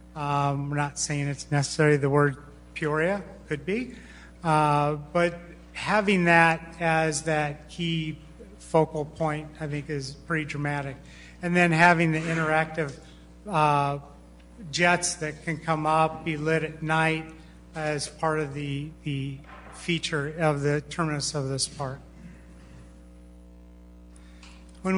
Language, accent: English, American